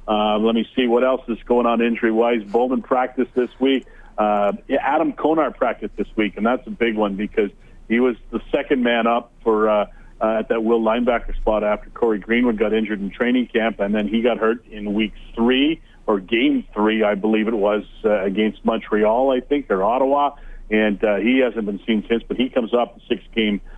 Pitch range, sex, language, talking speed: 110-125 Hz, male, English, 210 wpm